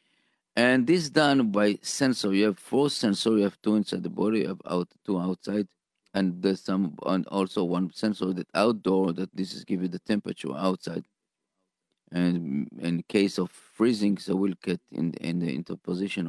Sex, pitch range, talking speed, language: male, 90-105 Hz, 190 wpm, English